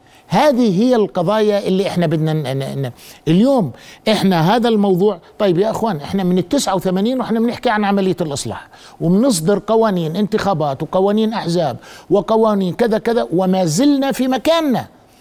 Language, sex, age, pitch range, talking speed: Arabic, male, 50-69, 170-235 Hz, 145 wpm